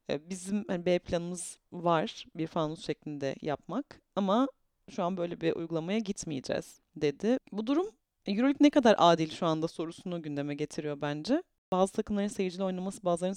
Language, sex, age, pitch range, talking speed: Turkish, female, 30-49, 155-210 Hz, 150 wpm